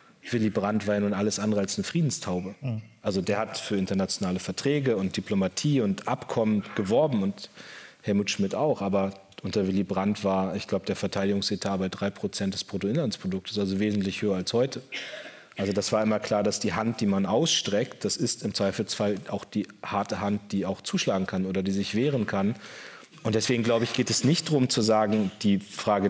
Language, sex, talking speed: German, male, 190 wpm